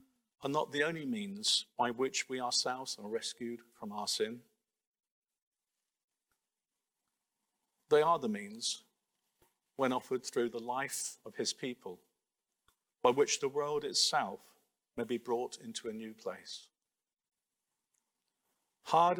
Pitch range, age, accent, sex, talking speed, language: 125-215 Hz, 50-69, British, male, 120 wpm, English